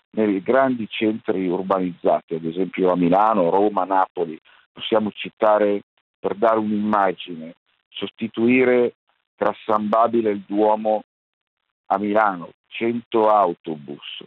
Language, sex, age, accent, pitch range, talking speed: Italian, male, 50-69, native, 100-125 Hz, 105 wpm